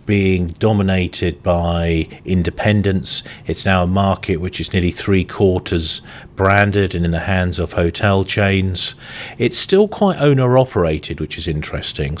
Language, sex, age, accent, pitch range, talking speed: English, male, 40-59, British, 85-100 Hz, 145 wpm